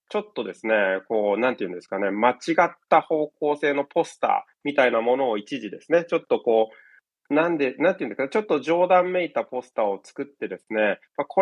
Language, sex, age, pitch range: Japanese, male, 20-39, 120-180 Hz